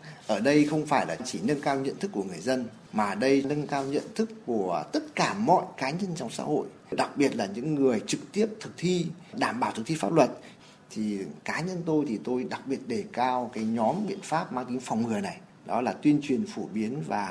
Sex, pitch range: male, 135-200 Hz